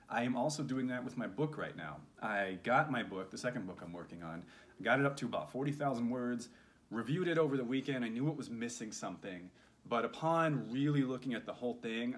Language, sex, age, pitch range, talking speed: English, male, 30-49, 105-135 Hz, 225 wpm